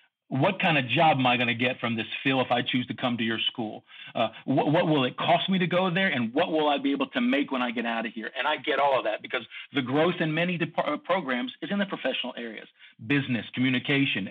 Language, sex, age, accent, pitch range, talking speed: English, male, 50-69, American, 125-165 Hz, 265 wpm